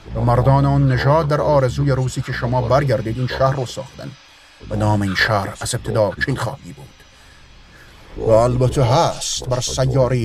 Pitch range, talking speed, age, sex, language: 110-135 Hz, 145 wpm, 30-49, male, Persian